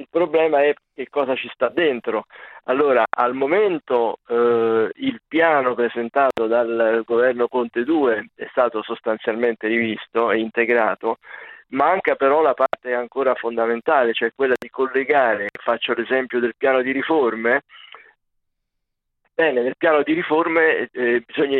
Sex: male